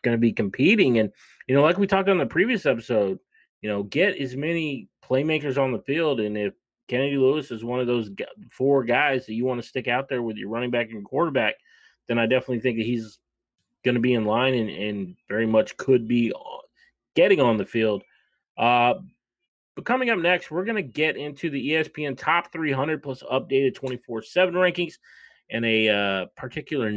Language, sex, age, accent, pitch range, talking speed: English, male, 30-49, American, 115-155 Hz, 200 wpm